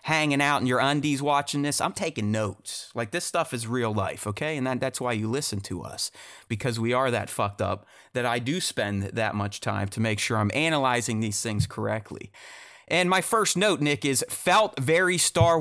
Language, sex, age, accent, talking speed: English, male, 30-49, American, 210 wpm